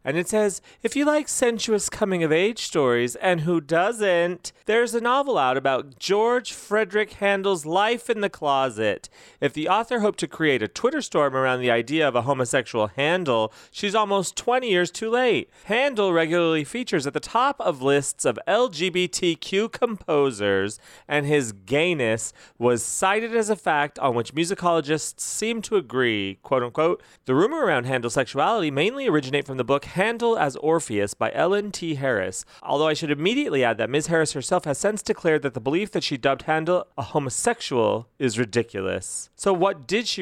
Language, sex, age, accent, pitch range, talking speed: English, male, 30-49, American, 130-205 Hz, 180 wpm